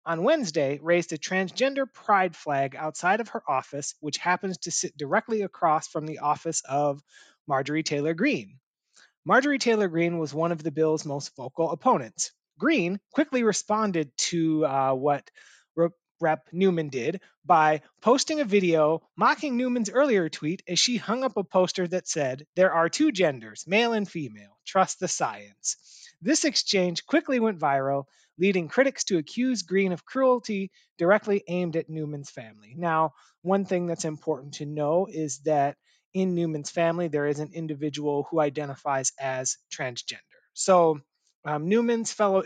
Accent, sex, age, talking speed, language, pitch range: American, male, 30-49, 155 wpm, English, 155-200 Hz